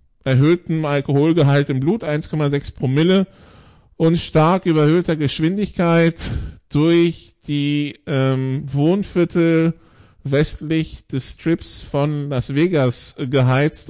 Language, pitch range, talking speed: English, 140-170 Hz, 95 wpm